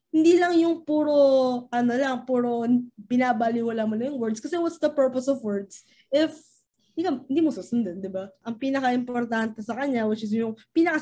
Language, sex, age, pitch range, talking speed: Filipino, female, 20-39, 235-310 Hz, 160 wpm